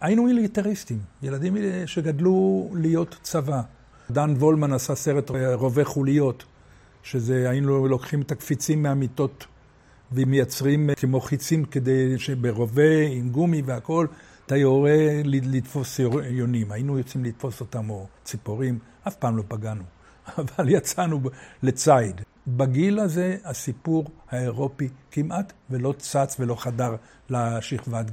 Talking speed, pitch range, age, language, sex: 115 wpm, 120-155 Hz, 60-79, Hebrew, male